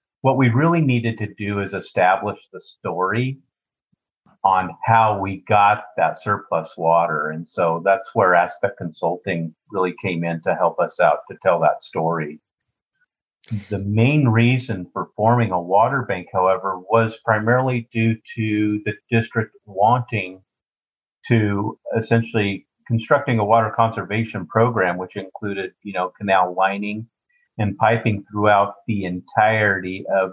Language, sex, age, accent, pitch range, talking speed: English, male, 50-69, American, 95-115 Hz, 135 wpm